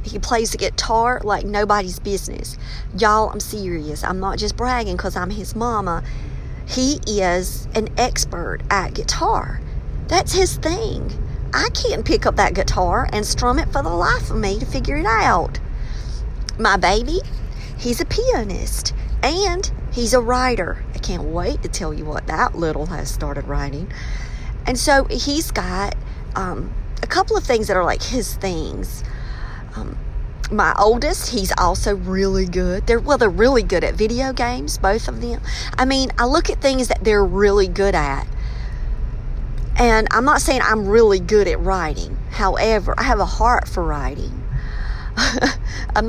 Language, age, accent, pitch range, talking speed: English, 50-69, American, 190-260 Hz, 165 wpm